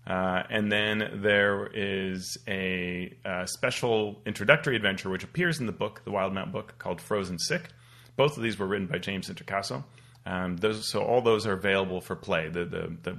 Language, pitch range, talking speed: English, 90-120 Hz, 185 wpm